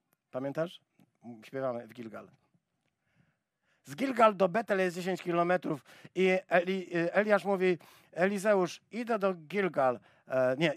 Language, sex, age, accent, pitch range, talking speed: Polish, male, 50-69, native, 160-205 Hz, 105 wpm